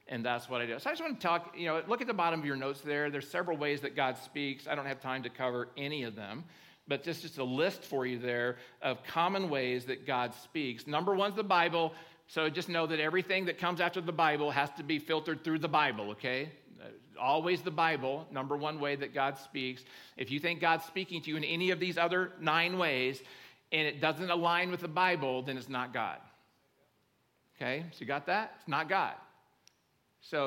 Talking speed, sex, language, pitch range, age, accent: 230 wpm, male, English, 135-175 Hz, 50-69, American